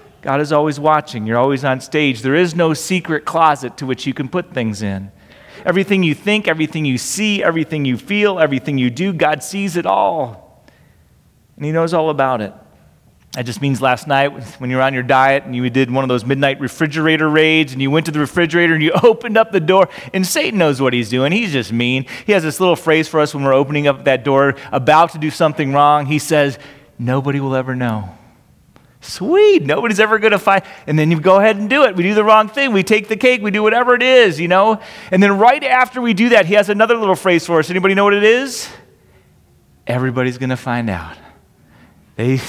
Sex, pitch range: male, 130-195 Hz